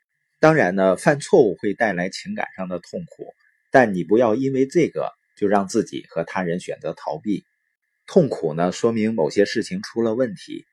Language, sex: Chinese, male